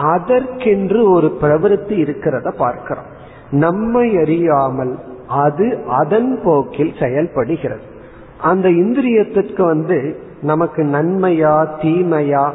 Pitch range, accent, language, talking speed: 140-180 Hz, native, Tamil, 80 wpm